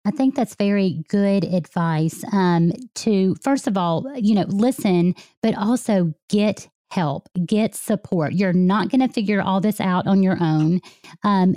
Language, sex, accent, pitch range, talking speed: English, female, American, 175-215 Hz, 165 wpm